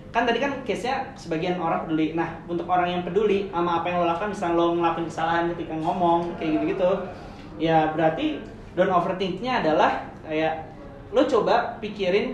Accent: native